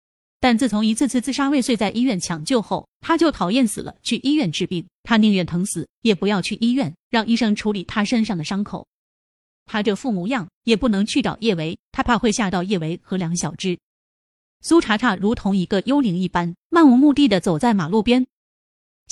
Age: 30-49